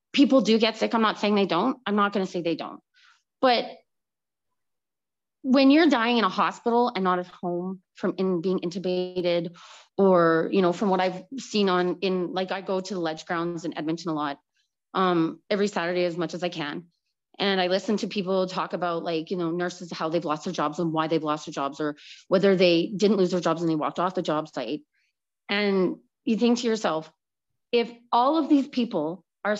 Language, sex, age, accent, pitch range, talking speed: English, female, 30-49, American, 175-225 Hz, 215 wpm